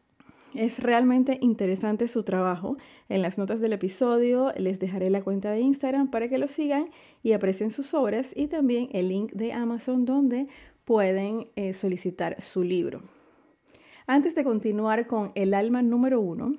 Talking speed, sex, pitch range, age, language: 155 wpm, female, 195-260 Hz, 30-49, Spanish